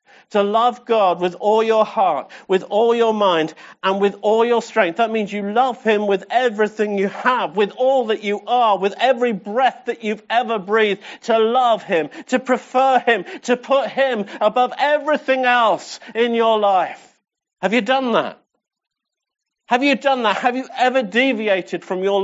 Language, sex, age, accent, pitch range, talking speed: English, male, 50-69, British, 200-250 Hz, 180 wpm